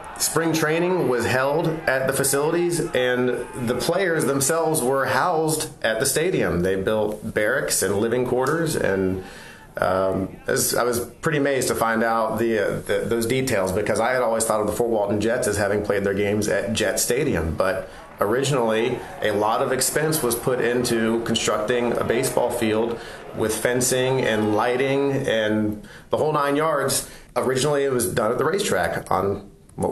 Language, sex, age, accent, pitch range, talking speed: English, male, 30-49, American, 115-135 Hz, 175 wpm